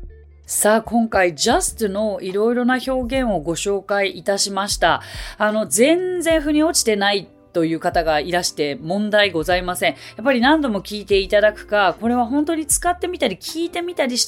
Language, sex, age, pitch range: Japanese, female, 30-49, 180-270 Hz